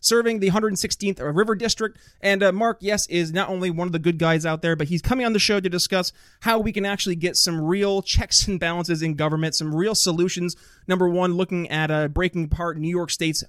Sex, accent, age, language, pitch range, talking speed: male, American, 30-49, English, 165-200 Hz, 230 wpm